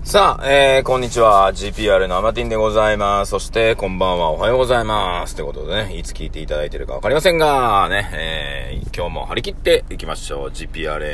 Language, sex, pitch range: Japanese, male, 85-125 Hz